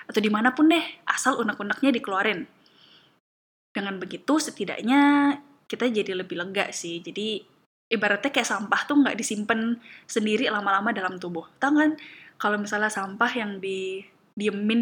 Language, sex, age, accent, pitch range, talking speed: Indonesian, female, 10-29, native, 195-245 Hz, 135 wpm